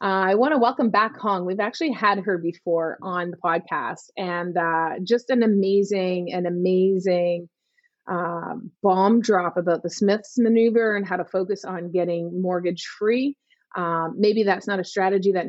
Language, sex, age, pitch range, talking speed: English, female, 30-49, 180-235 Hz, 170 wpm